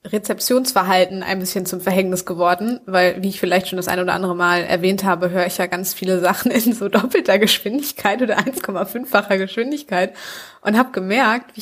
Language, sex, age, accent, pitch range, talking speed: German, female, 20-39, German, 180-215 Hz, 180 wpm